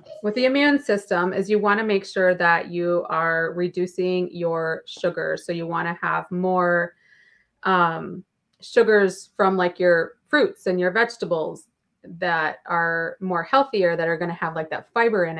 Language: English